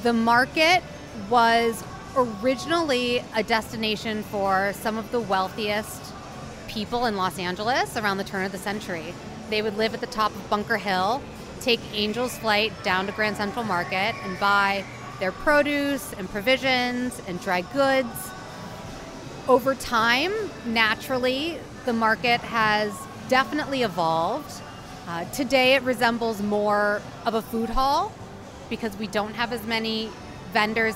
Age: 30-49